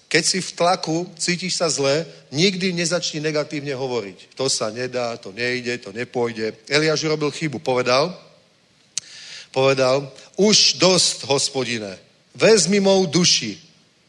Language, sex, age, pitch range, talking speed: Czech, male, 40-59, 135-180 Hz, 125 wpm